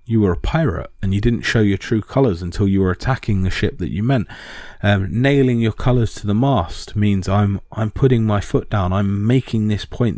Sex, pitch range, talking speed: male, 95-120 Hz, 225 wpm